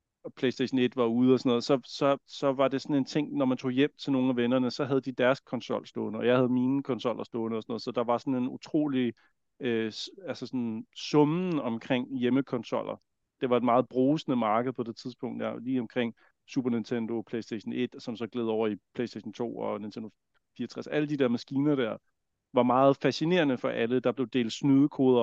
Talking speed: 215 wpm